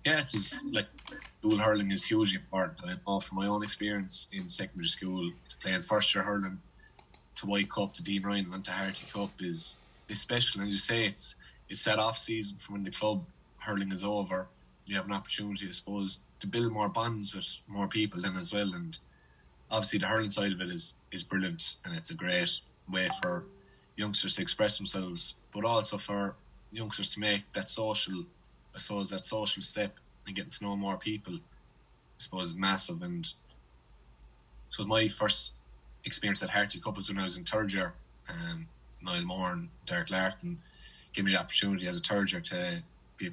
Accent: Irish